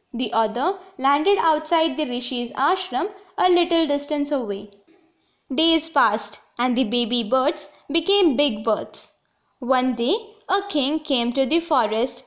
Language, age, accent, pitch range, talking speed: Telugu, 20-39, native, 235-330 Hz, 135 wpm